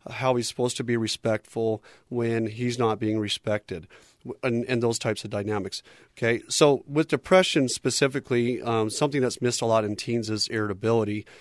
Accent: American